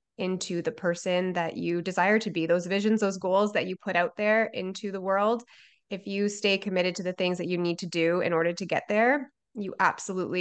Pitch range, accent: 180-230 Hz, American